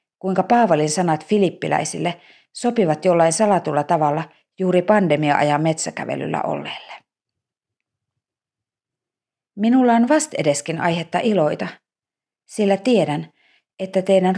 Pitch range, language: 155-195 Hz, Finnish